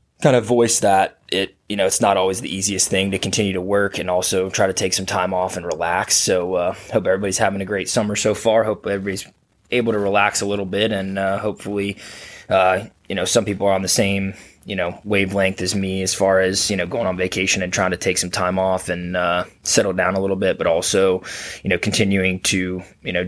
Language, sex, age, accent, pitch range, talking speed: English, male, 20-39, American, 95-100 Hz, 235 wpm